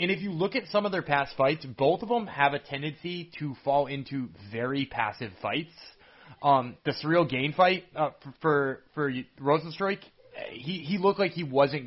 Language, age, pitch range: English, 30-49, 130-165 Hz